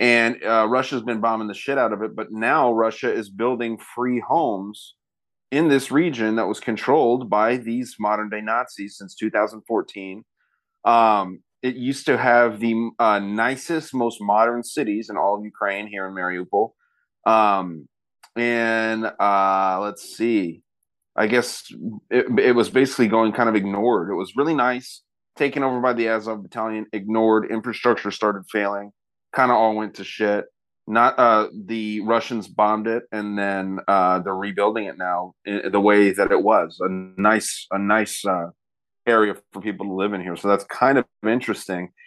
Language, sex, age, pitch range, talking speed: English, male, 30-49, 100-115 Hz, 170 wpm